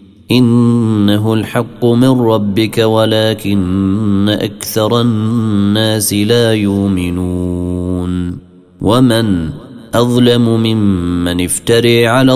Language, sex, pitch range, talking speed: Arabic, male, 90-115 Hz, 70 wpm